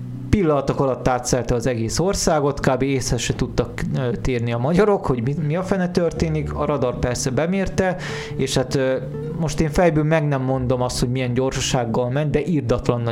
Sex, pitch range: male, 125-155 Hz